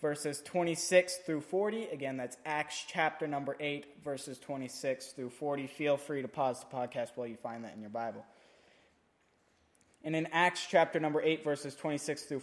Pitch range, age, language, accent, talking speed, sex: 135-175 Hz, 20-39, English, American, 175 wpm, male